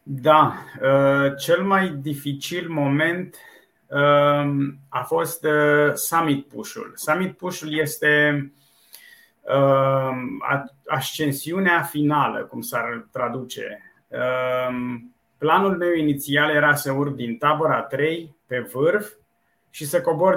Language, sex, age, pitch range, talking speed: Romanian, male, 30-49, 140-165 Hz, 105 wpm